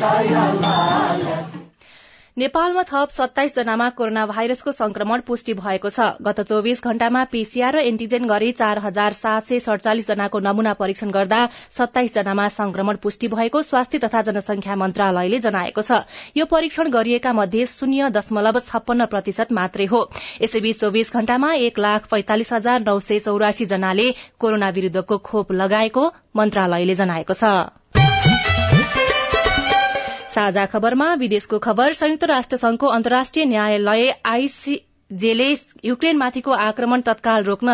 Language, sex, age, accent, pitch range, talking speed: English, female, 20-39, Indian, 210-245 Hz, 100 wpm